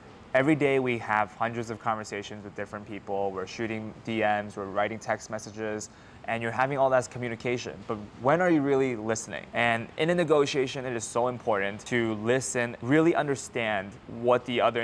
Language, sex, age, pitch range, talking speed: English, male, 20-39, 110-125 Hz, 180 wpm